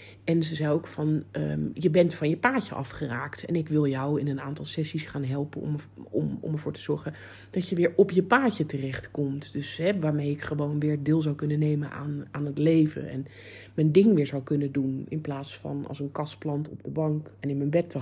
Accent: Dutch